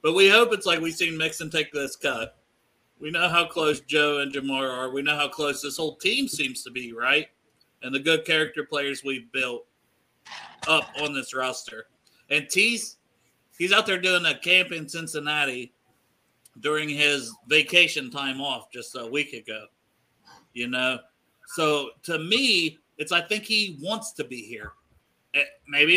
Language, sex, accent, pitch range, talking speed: English, male, American, 140-175 Hz, 170 wpm